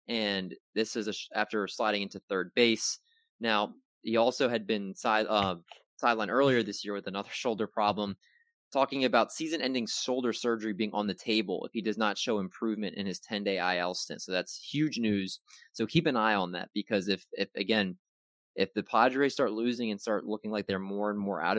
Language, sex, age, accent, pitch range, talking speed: English, male, 20-39, American, 100-120 Hz, 210 wpm